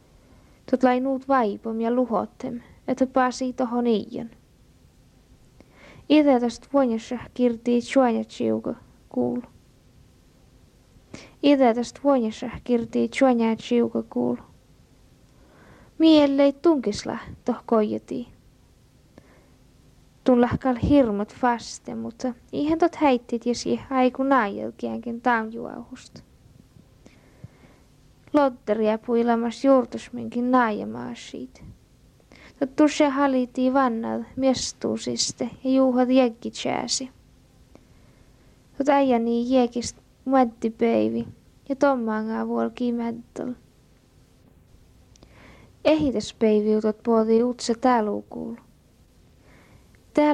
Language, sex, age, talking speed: Finnish, female, 20-39, 75 wpm